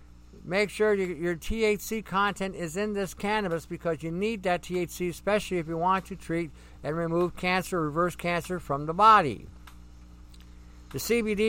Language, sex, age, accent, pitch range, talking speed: English, male, 50-69, American, 125-190 Hz, 160 wpm